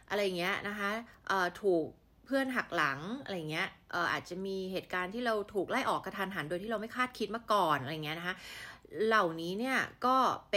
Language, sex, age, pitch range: Thai, female, 20-39, 170-215 Hz